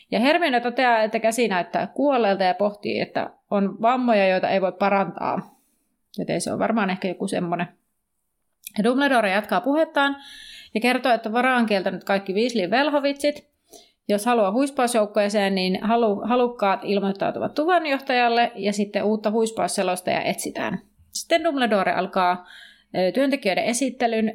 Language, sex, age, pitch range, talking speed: Finnish, female, 30-49, 195-255 Hz, 130 wpm